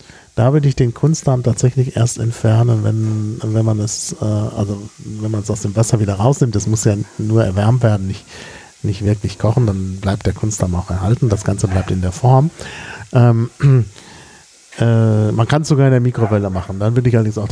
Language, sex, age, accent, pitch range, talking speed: German, male, 40-59, German, 110-140 Hz, 190 wpm